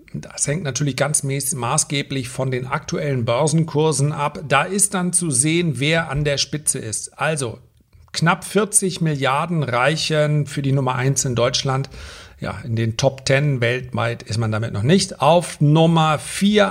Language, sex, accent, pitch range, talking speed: German, male, German, 125-165 Hz, 160 wpm